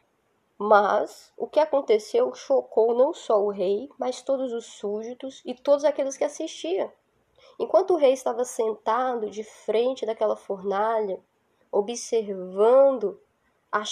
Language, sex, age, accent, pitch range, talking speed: Portuguese, female, 10-29, Brazilian, 235-315 Hz, 125 wpm